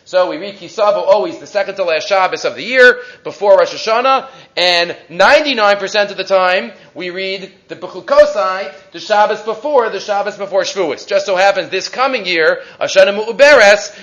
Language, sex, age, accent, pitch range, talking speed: English, male, 30-49, Canadian, 195-265 Hz, 175 wpm